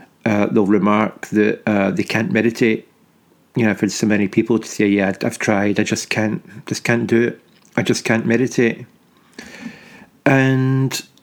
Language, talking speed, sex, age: English, 165 wpm, male, 40-59